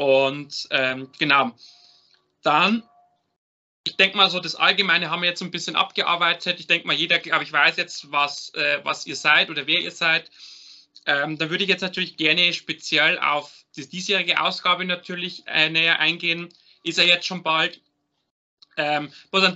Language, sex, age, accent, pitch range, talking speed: German, male, 30-49, German, 150-180 Hz, 170 wpm